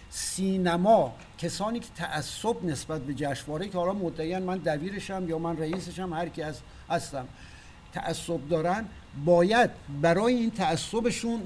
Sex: male